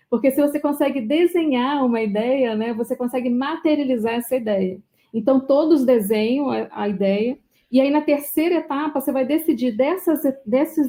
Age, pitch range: 40-59, 235-285 Hz